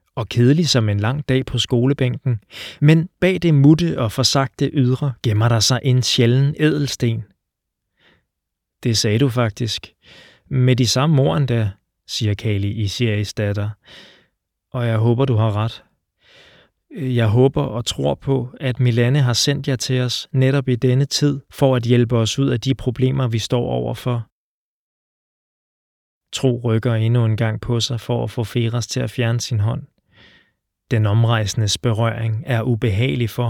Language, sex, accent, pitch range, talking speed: Danish, male, native, 110-130 Hz, 160 wpm